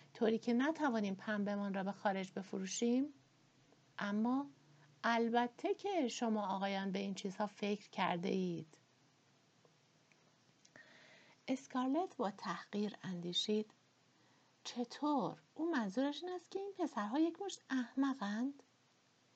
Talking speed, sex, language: 100 wpm, female, Persian